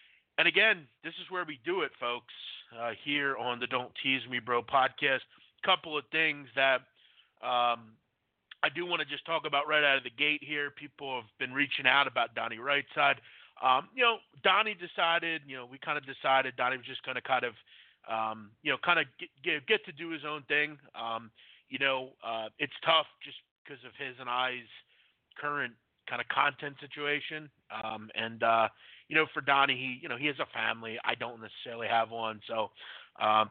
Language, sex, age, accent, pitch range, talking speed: English, male, 30-49, American, 125-150 Hz, 205 wpm